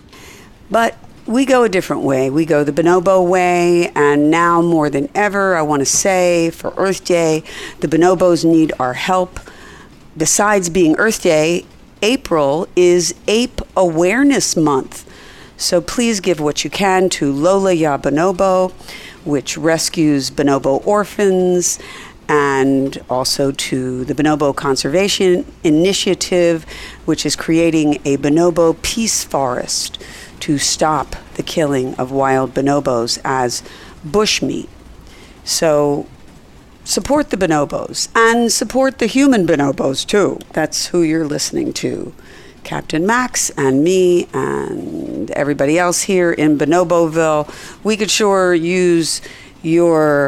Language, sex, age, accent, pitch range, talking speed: English, female, 50-69, American, 145-185 Hz, 125 wpm